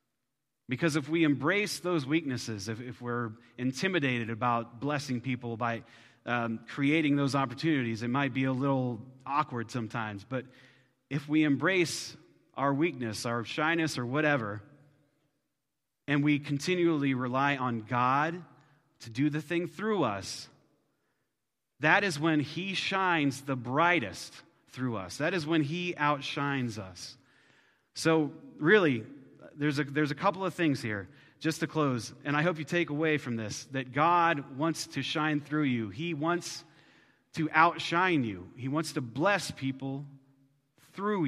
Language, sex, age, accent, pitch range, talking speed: English, male, 30-49, American, 125-155 Hz, 145 wpm